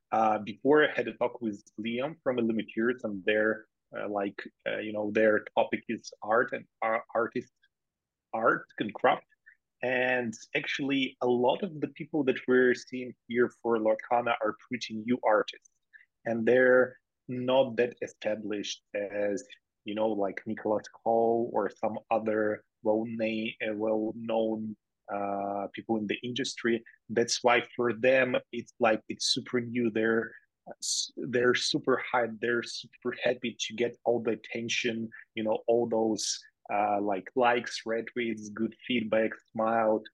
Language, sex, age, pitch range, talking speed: English, male, 30-49, 110-125 Hz, 145 wpm